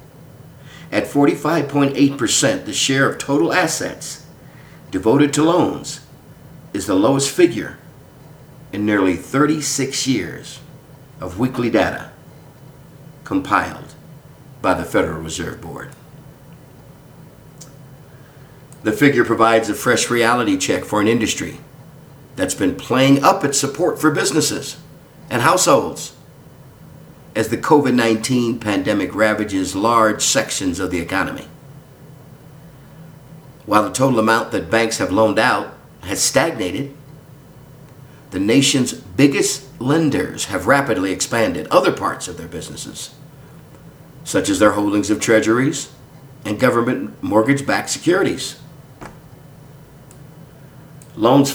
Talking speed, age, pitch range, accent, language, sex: 105 wpm, 50-69, 130-150 Hz, American, English, male